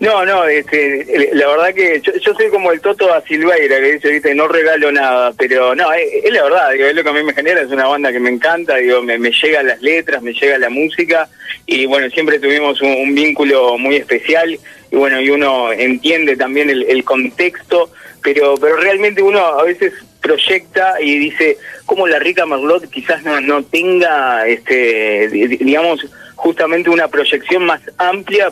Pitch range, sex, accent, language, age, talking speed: 135-225 Hz, male, Argentinian, Spanish, 20-39, 195 wpm